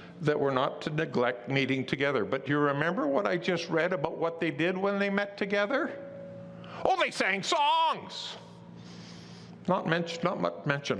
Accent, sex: American, male